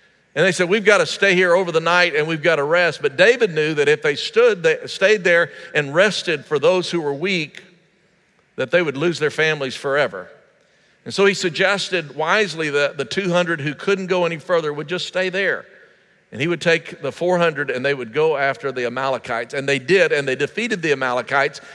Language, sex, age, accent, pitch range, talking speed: English, male, 50-69, American, 140-185 Hz, 215 wpm